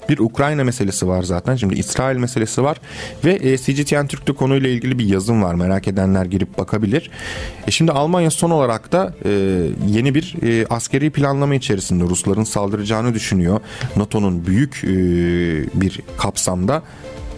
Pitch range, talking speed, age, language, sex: 95-125 Hz, 135 wpm, 40-59, Turkish, male